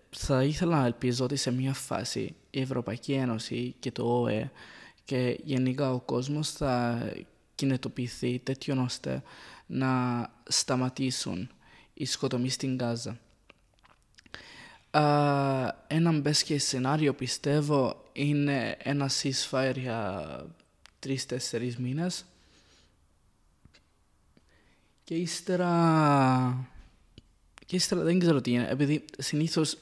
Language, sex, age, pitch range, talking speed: Greek, male, 20-39, 125-145 Hz, 95 wpm